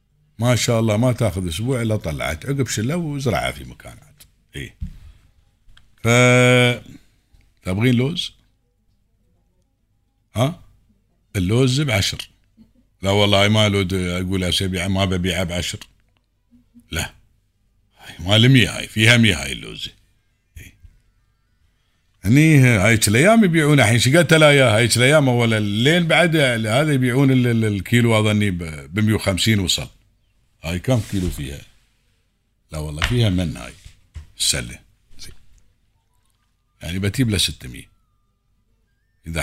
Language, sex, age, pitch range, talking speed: Arabic, male, 50-69, 95-120 Hz, 115 wpm